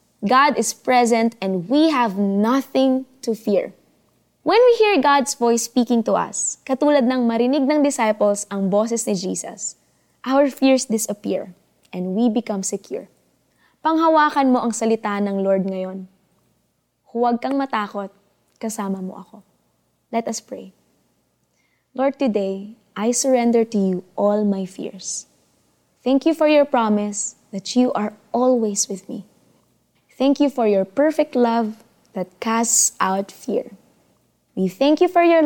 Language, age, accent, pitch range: Filipino, 20-39, native, 205-285 Hz